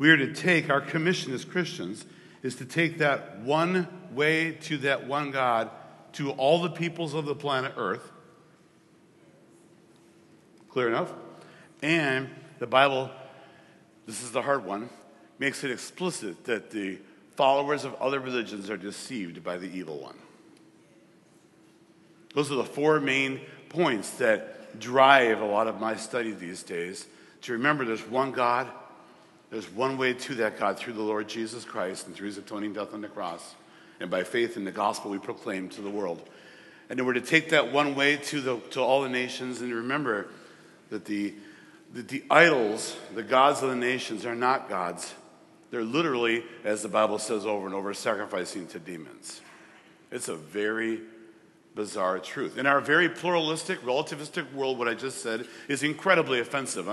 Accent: American